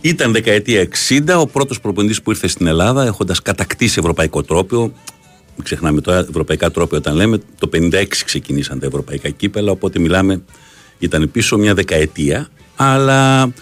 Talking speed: 150 wpm